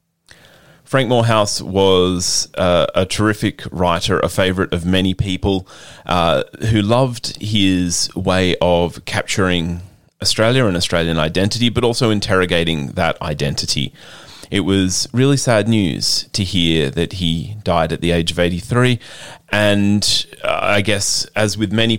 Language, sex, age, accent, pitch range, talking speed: English, male, 30-49, Australian, 90-130 Hz, 135 wpm